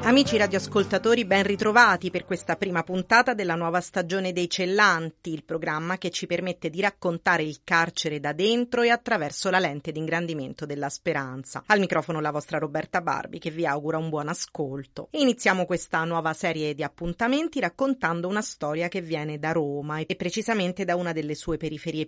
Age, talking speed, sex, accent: 40-59, 170 wpm, female, native